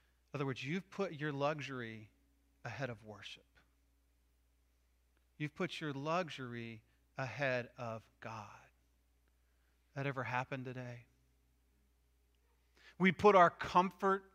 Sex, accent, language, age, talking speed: male, American, English, 40-59, 105 wpm